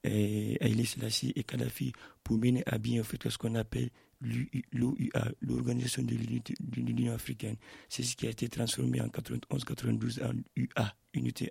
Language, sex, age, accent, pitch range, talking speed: French, male, 60-79, French, 115-130 Hz, 150 wpm